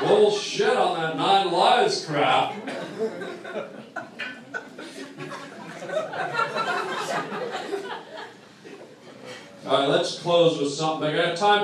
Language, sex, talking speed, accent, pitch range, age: English, male, 75 wpm, American, 155-210 Hz, 40-59